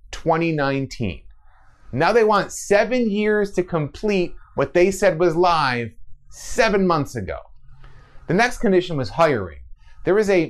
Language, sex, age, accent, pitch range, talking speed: English, male, 30-49, American, 100-165 Hz, 135 wpm